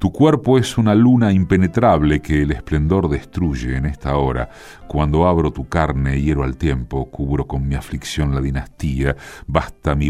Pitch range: 70-90 Hz